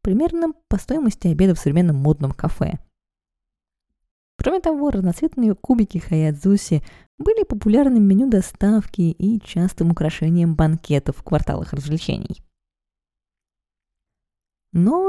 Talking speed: 100 wpm